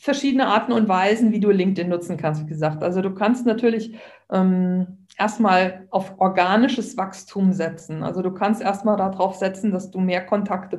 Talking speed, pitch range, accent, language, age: 170 wpm, 180-220 Hz, German, German, 50-69